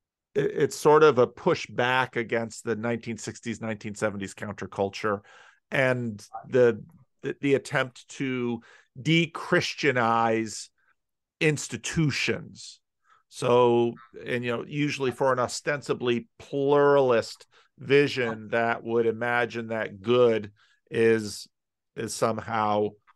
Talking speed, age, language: 95 wpm, 50-69, English